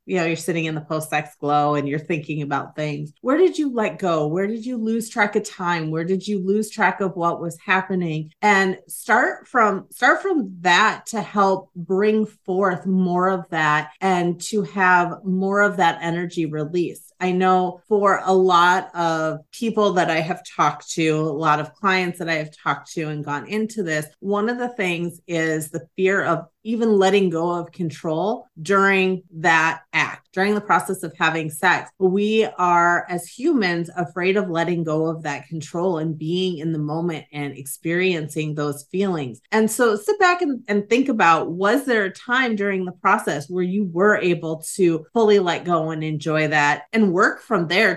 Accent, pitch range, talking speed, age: American, 160-205 Hz, 190 wpm, 30-49